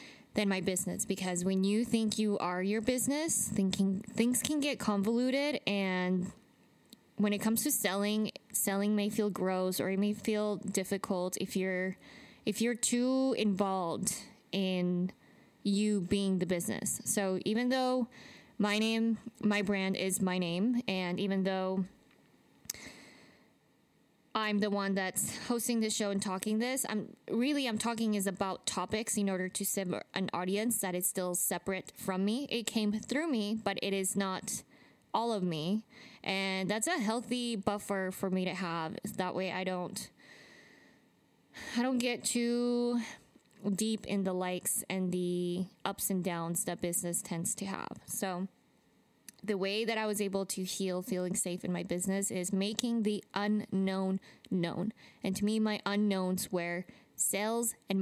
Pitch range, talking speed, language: 190-225 Hz, 160 wpm, English